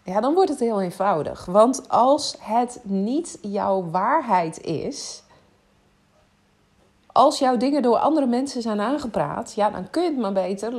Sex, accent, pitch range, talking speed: female, Dutch, 190-250 Hz, 155 wpm